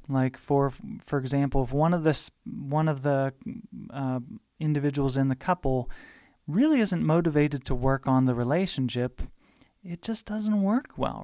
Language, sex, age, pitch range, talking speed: English, male, 30-49, 130-165 Hz, 155 wpm